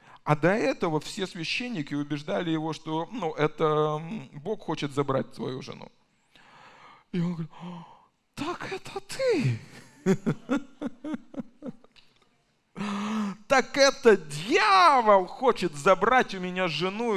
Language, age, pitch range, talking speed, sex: Russian, 20-39, 150-215 Hz, 105 wpm, male